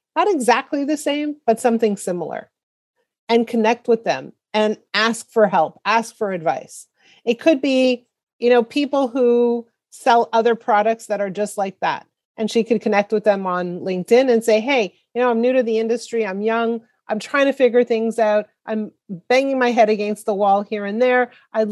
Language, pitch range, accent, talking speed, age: English, 210-255 Hz, American, 195 wpm, 40-59